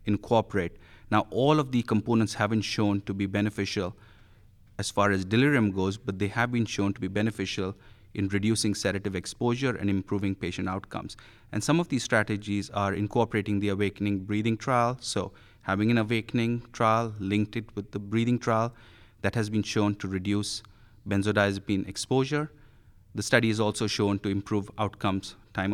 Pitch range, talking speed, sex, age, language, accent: 100-115 Hz, 165 wpm, male, 30-49, English, Indian